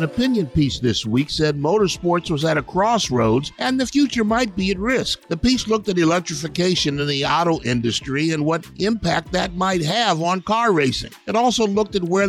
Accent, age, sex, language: American, 50-69, male, English